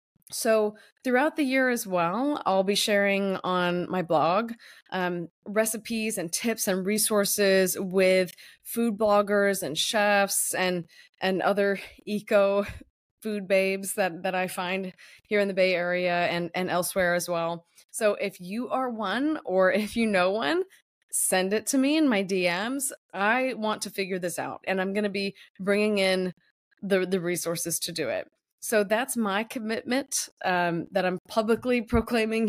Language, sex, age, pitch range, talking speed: English, female, 20-39, 185-220 Hz, 165 wpm